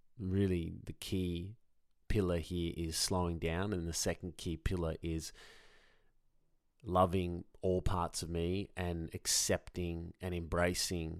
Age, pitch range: 30-49, 85-105 Hz